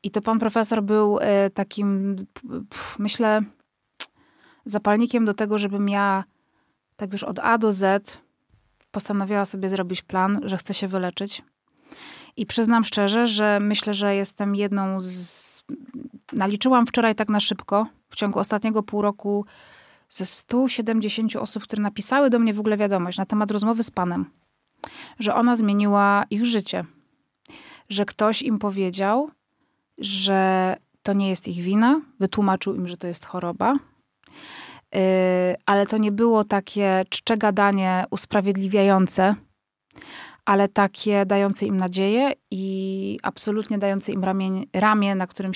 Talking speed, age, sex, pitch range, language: 135 wpm, 20-39, female, 195-215 Hz, Polish